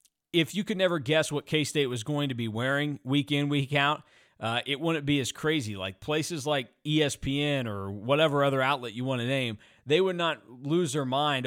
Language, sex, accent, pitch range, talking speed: English, male, American, 125-155 Hz, 215 wpm